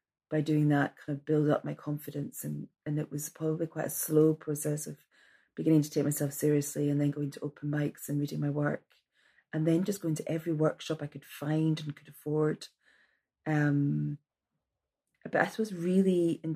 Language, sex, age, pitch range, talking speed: English, female, 30-49, 145-155 Hz, 190 wpm